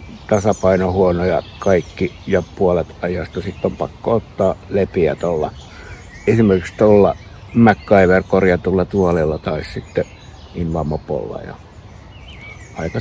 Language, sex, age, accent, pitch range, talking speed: Finnish, male, 60-79, native, 85-105 Hz, 100 wpm